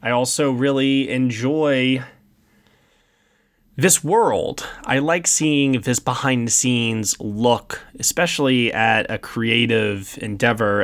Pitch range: 105-140 Hz